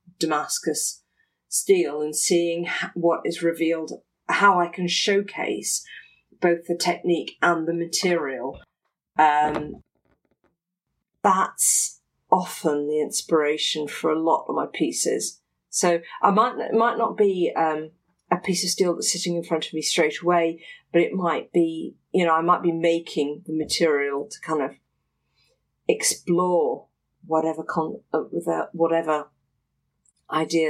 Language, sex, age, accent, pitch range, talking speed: English, female, 40-59, British, 155-185 Hz, 135 wpm